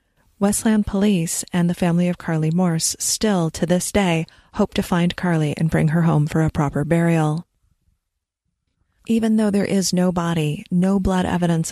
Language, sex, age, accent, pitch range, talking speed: English, female, 30-49, American, 160-200 Hz, 170 wpm